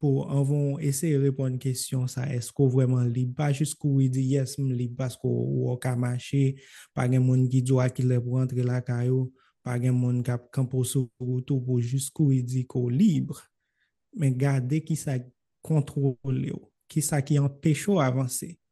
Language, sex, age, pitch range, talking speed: English, male, 20-39, 130-145 Hz, 105 wpm